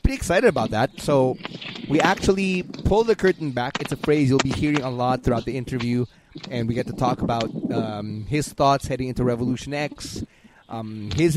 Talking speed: 195 wpm